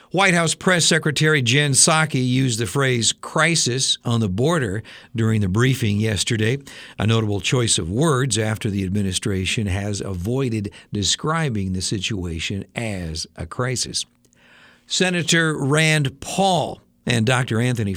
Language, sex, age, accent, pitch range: Japanese, male, 60-79, American, 110-145 Hz